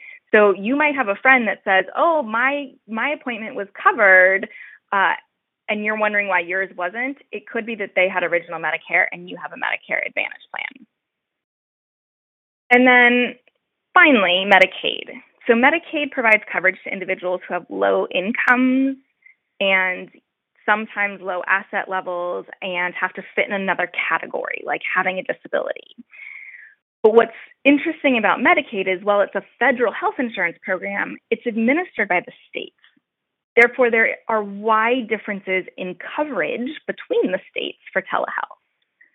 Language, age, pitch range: English, 20-39, 190-270 Hz